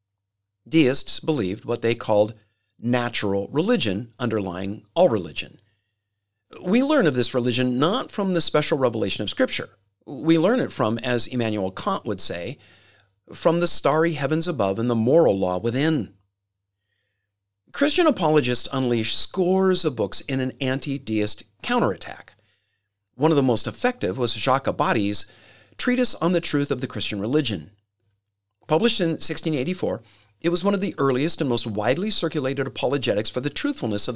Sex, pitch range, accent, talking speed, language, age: male, 105-155 Hz, American, 150 wpm, English, 40-59